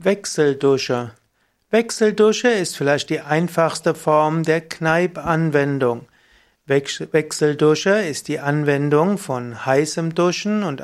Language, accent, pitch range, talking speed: German, German, 140-175 Hz, 95 wpm